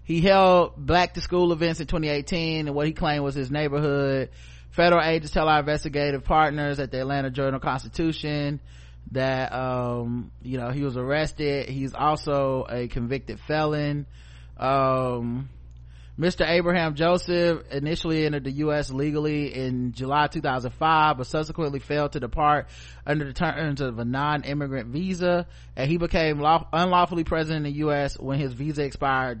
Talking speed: 155 wpm